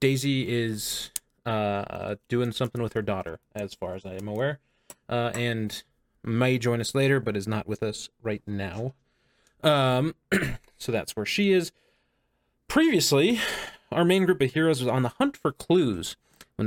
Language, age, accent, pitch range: English, 30-49, American, 105-145 Hz